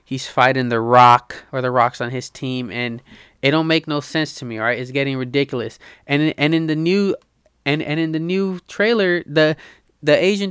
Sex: male